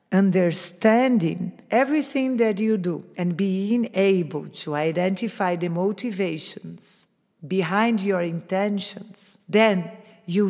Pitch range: 175-220 Hz